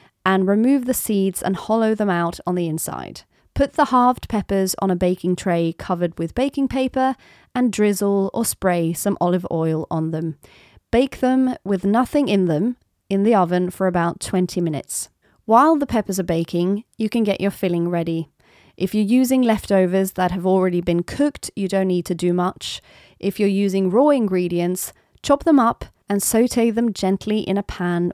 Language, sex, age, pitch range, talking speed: English, female, 30-49, 180-230 Hz, 185 wpm